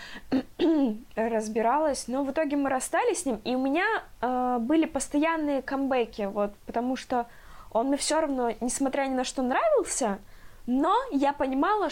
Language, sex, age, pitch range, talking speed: Russian, female, 20-39, 220-275 Hz, 150 wpm